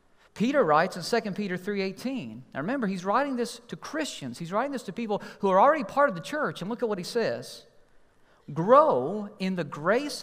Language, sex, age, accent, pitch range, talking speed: English, male, 40-59, American, 160-235 Hz, 205 wpm